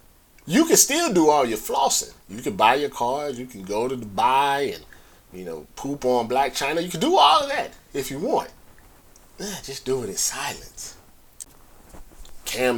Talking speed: 185 wpm